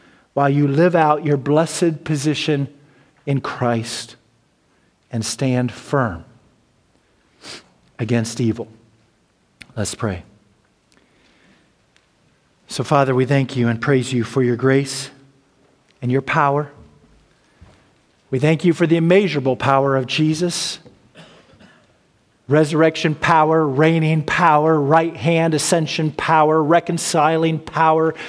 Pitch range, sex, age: 125-160 Hz, male, 50-69